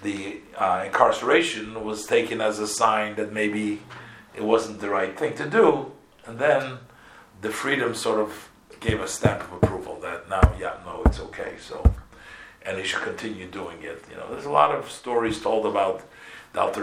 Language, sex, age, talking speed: English, male, 50-69, 180 wpm